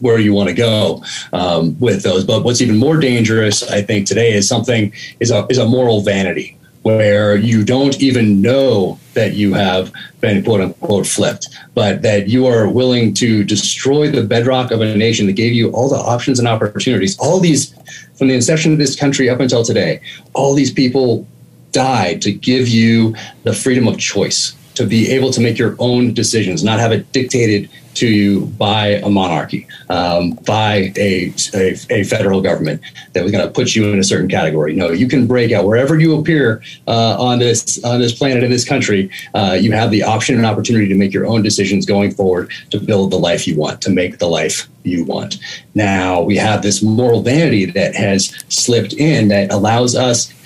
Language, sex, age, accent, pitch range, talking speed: English, male, 30-49, American, 100-125 Hz, 200 wpm